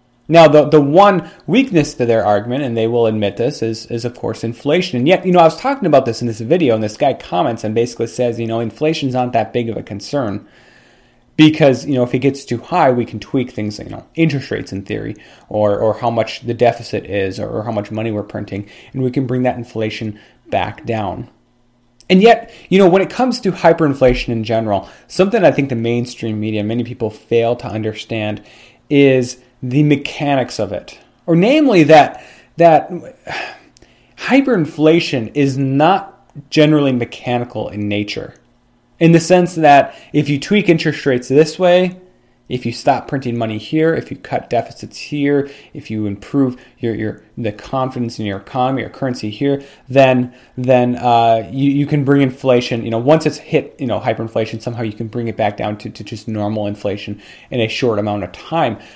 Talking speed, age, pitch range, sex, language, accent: 195 wpm, 30-49, 110-150 Hz, male, English, American